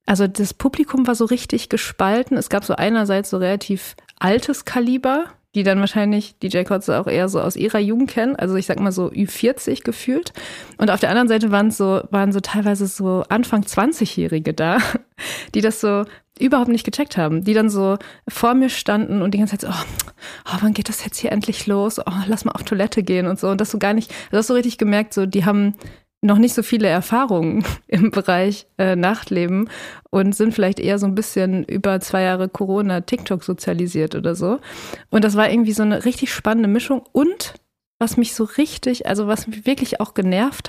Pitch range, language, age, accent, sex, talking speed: 195-235 Hz, German, 30-49, German, female, 205 wpm